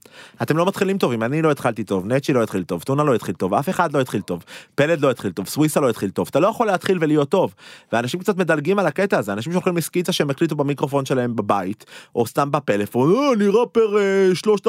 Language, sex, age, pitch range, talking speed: Hebrew, male, 30-49, 120-180 Hz, 230 wpm